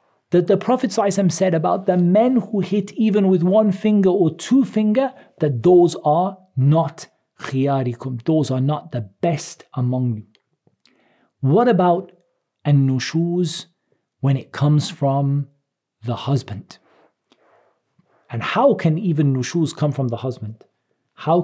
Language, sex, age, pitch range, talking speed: English, male, 40-59, 130-165 Hz, 135 wpm